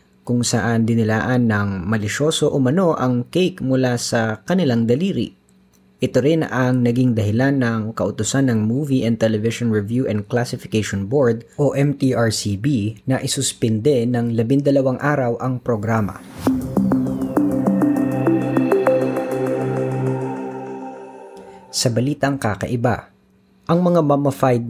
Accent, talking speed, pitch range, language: native, 105 wpm, 105-130 Hz, Filipino